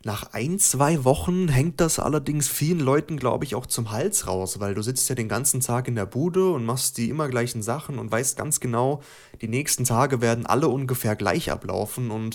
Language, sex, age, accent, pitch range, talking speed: German, male, 30-49, German, 110-130 Hz, 215 wpm